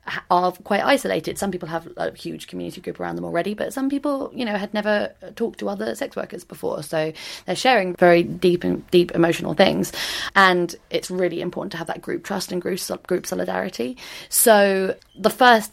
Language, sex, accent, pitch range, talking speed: English, female, British, 170-200 Hz, 195 wpm